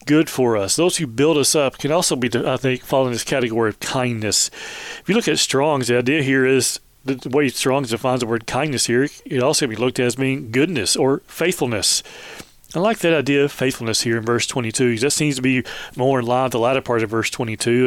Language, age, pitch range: English, 40-59, 120-145 Hz